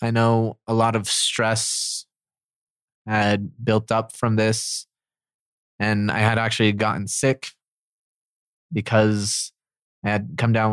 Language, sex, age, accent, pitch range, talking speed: English, male, 20-39, American, 105-120 Hz, 125 wpm